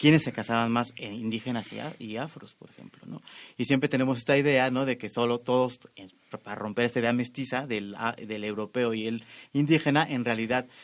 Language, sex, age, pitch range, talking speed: Spanish, male, 30-49, 115-130 Hz, 185 wpm